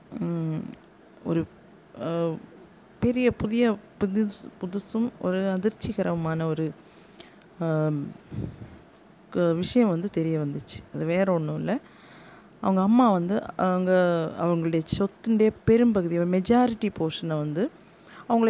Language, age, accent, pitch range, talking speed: Tamil, 30-49, native, 170-215 Hz, 90 wpm